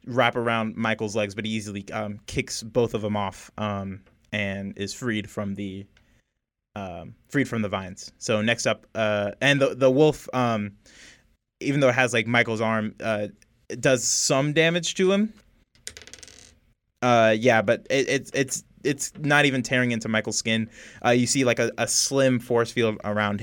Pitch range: 105-130 Hz